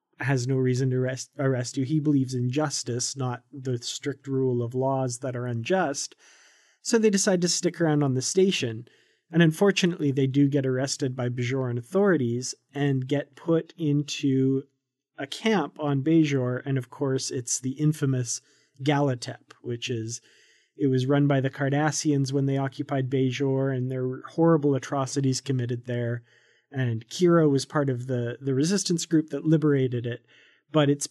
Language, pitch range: English, 130-150 Hz